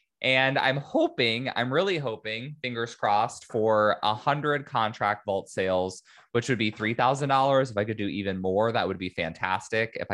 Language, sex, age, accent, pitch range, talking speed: English, male, 20-39, American, 95-130 Hz, 165 wpm